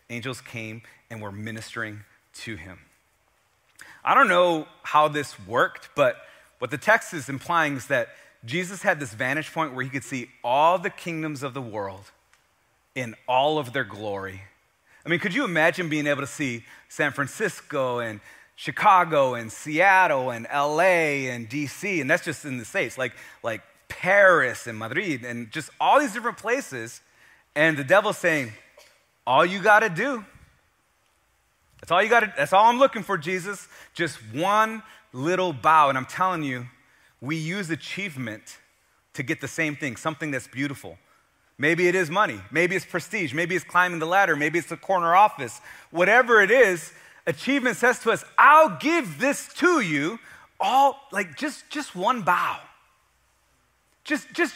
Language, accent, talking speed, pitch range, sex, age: English, American, 170 wpm, 130-200 Hz, male, 30-49